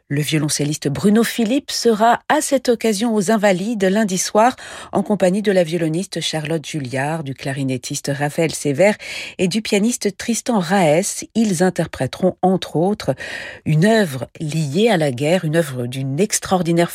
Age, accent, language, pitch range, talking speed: 50-69, French, French, 155-225 Hz, 150 wpm